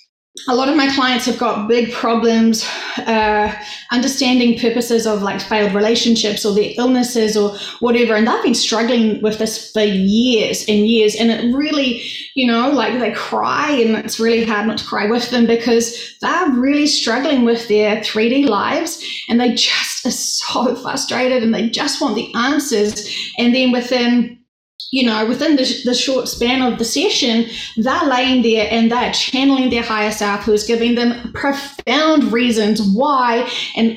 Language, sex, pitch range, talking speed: English, female, 225-280 Hz, 170 wpm